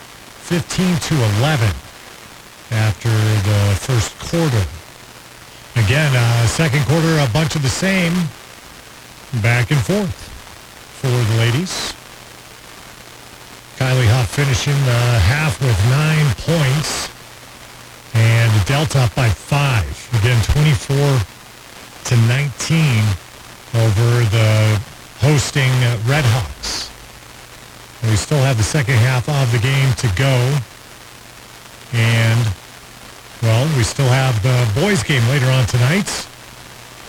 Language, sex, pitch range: English, male, 115-145 Hz